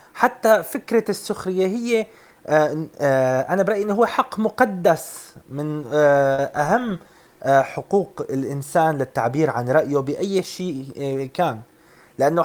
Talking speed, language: 100 wpm, Arabic